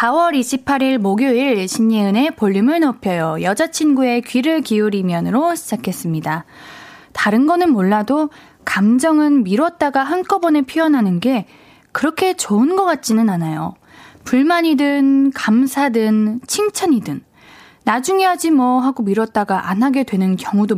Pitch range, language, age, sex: 210-305 Hz, Korean, 20-39, female